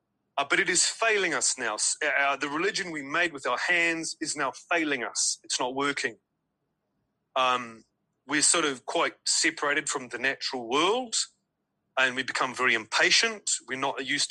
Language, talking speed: English, 170 wpm